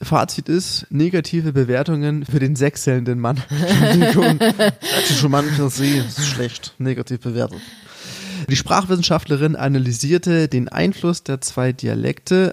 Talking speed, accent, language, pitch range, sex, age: 85 wpm, German, German, 130-155 Hz, male, 20-39